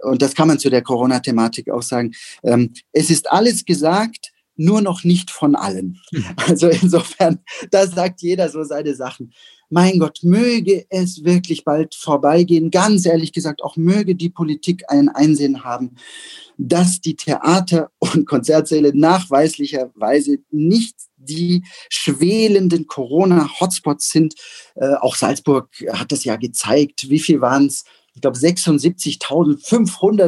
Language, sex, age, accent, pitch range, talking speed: German, male, 40-59, German, 140-180 Hz, 130 wpm